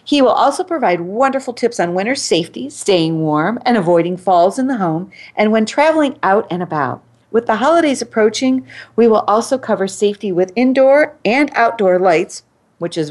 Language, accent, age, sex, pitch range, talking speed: English, American, 40-59, female, 170-240 Hz, 180 wpm